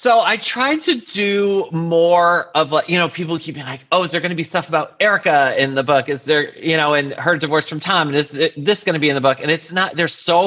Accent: American